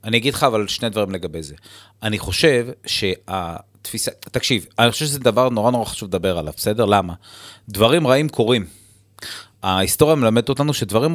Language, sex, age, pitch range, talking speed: Hebrew, male, 30-49, 95-125 Hz, 160 wpm